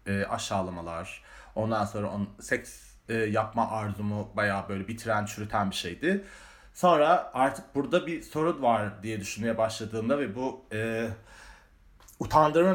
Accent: native